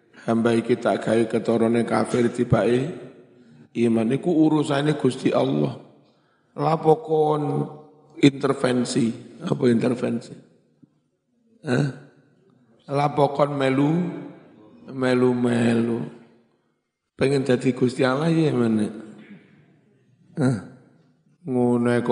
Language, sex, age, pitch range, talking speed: Indonesian, male, 50-69, 115-130 Hz, 65 wpm